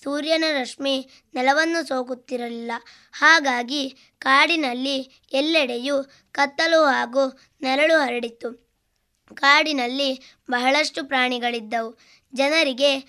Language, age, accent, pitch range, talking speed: Kannada, 20-39, native, 255-290 Hz, 70 wpm